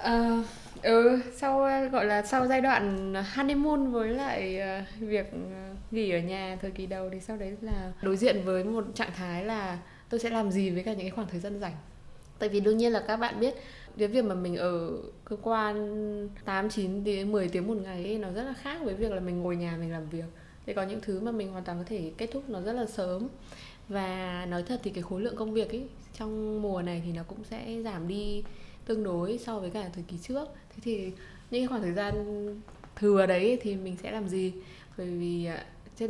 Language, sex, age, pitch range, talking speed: Vietnamese, female, 10-29, 180-225 Hz, 220 wpm